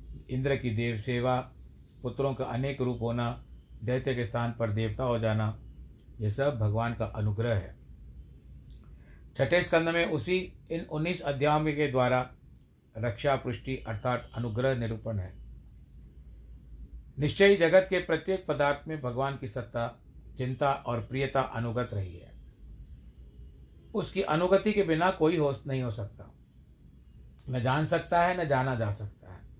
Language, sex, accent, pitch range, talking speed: Hindi, male, native, 115-145 Hz, 140 wpm